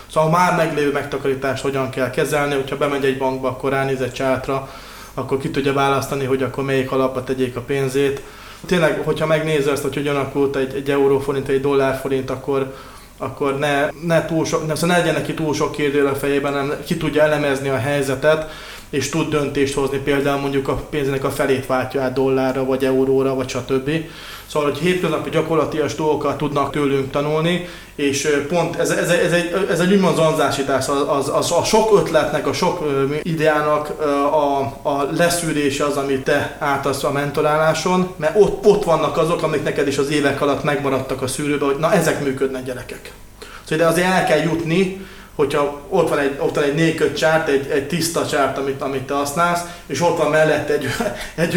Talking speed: 185 wpm